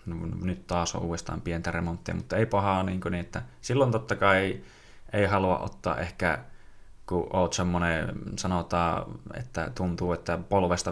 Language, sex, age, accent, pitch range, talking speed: Finnish, male, 20-39, native, 90-105 Hz, 135 wpm